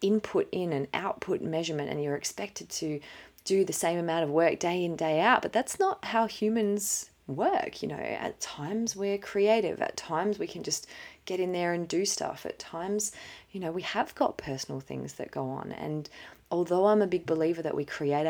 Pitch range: 140-175 Hz